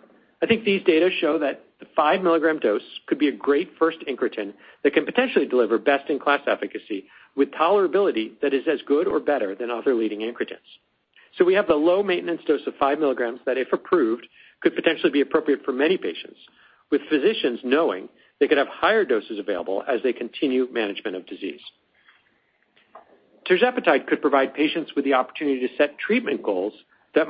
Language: English